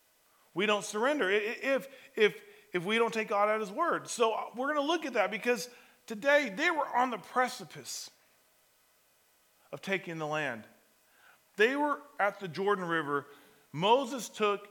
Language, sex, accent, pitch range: Japanese, male, American, 160-215 Hz